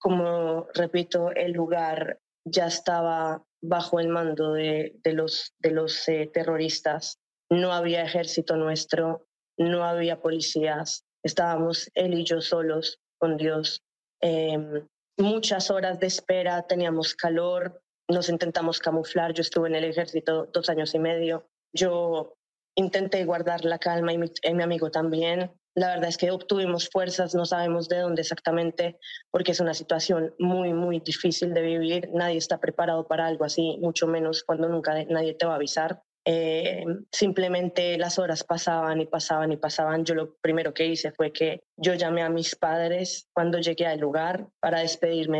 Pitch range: 165-180 Hz